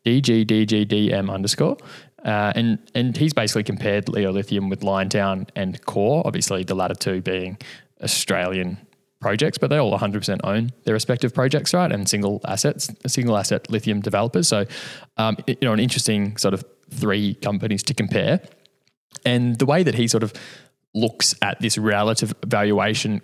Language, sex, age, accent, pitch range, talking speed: English, male, 20-39, Australian, 105-125 Hz, 150 wpm